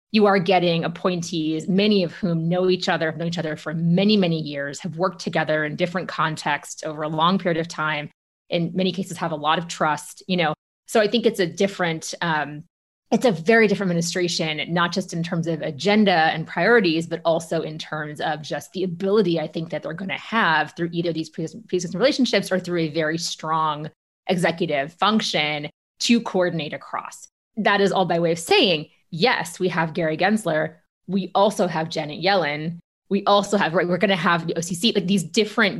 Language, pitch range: English, 160-195 Hz